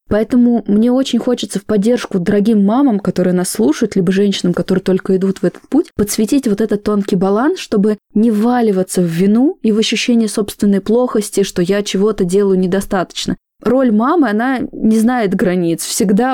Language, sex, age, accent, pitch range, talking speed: Russian, female, 20-39, native, 195-235 Hz, 170 wpm